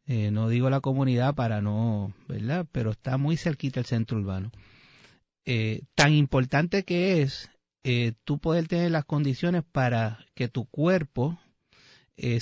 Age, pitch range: 30-49, 115-150 Hz